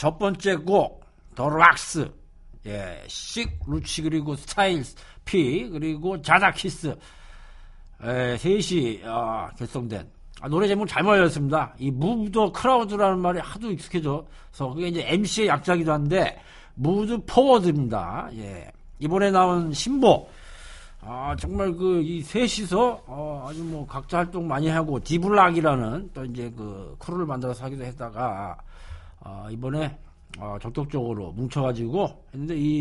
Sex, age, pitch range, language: male, 50-69, 125-180 Hz, Korean